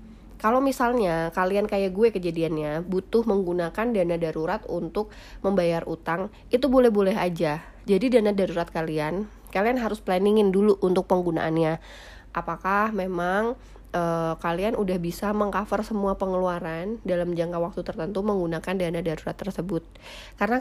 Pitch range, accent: 170-210 Hz, native